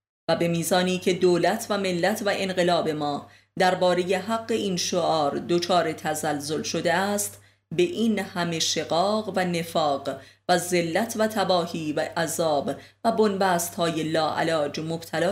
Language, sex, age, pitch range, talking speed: Persian, female, 30-49, 160-190 Hz, 135 wpm